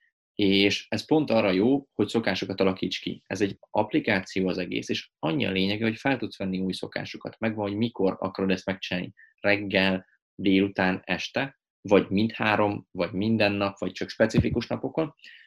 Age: 20-39